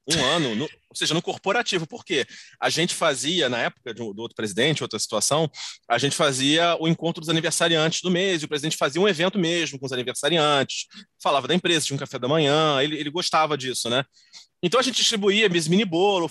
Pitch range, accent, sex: 145-205 Hz, Brazilian, male